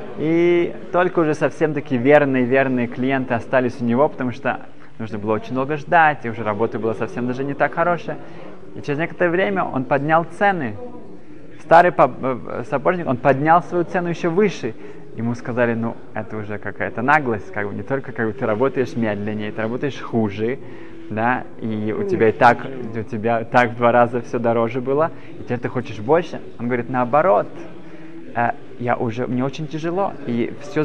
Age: 20-39